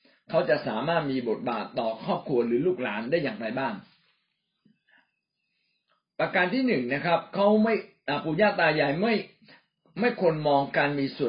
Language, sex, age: Thai, male, 60-79